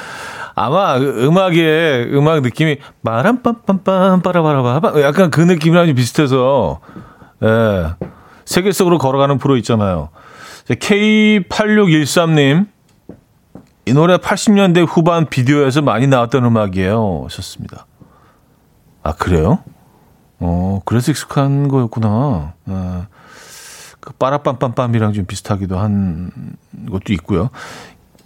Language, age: Korean, 40-59